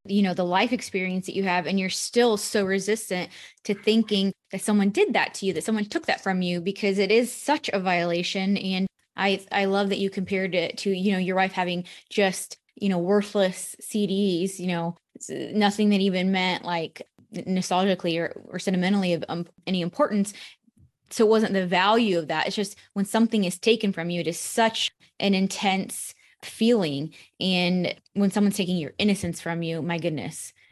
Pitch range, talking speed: 180-210 Hz, 190 wpm